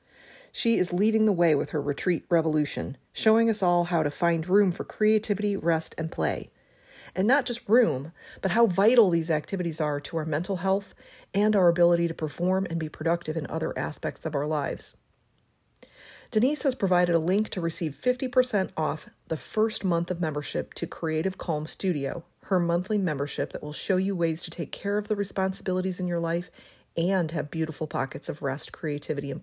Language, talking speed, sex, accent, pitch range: English, 190 wpm, female, American, 160-200 Hz